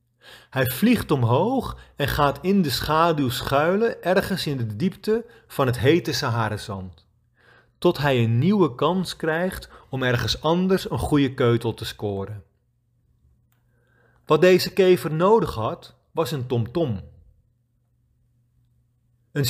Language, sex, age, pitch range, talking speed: Dutch, male, 40-59, 120-170 Hz, 125 wpm